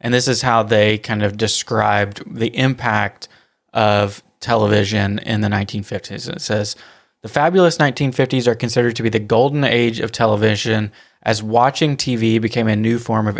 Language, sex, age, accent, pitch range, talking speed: English, male, 20-39, American, 110-125 Hz, 165 wpm